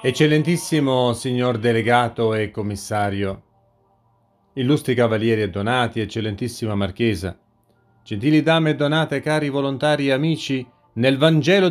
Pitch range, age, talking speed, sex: 115-170 Hz, 40-59, 110 wpm, male